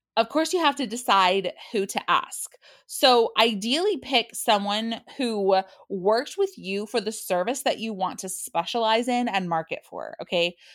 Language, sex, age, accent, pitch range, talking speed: English, female, 20-39, American, 185-245 Hz, 165 wpm